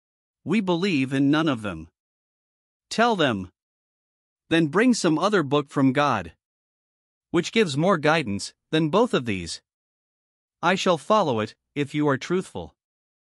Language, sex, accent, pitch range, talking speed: English, male, American, 120-170 Hz, 140 wpm